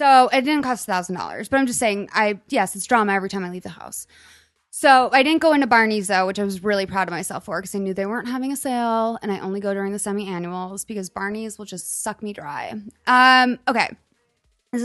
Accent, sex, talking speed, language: American, female, 240 wpm, English